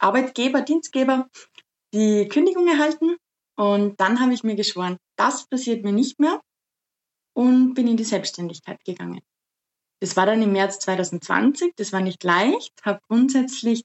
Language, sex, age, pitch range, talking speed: German, female, 20-39, 200-260 Hz, 150 wpm